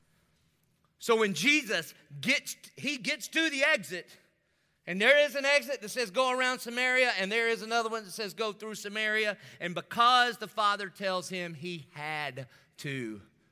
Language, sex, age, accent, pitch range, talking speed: English, male, 30-49, American, 165-230 Hz, 170 wpm